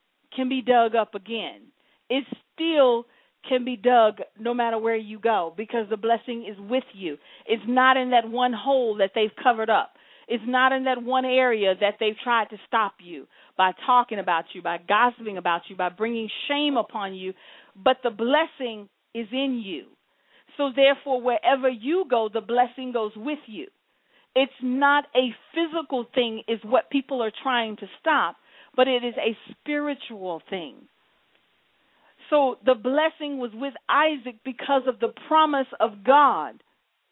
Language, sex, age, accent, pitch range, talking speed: English, female, 40-59, American, 225-275 Hz, 165 wpm